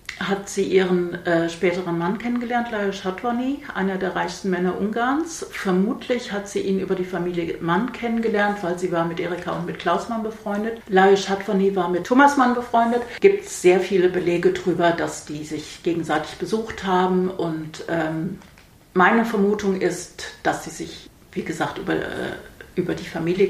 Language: German